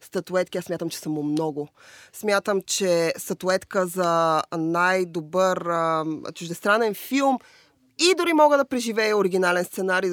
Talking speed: 120 wpm